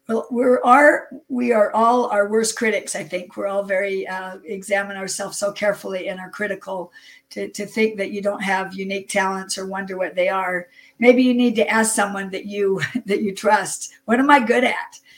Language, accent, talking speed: English, American, 210 wpm